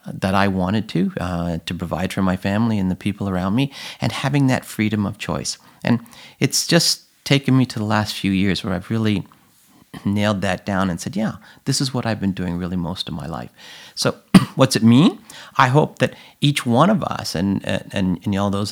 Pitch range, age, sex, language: 100-125 Hz, 50-69, male, English